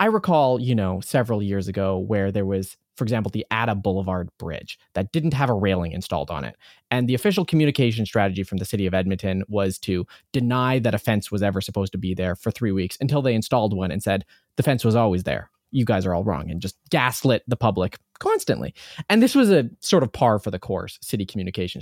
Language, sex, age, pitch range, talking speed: English, male, 20-39, 100-160 Hz, 230 wpm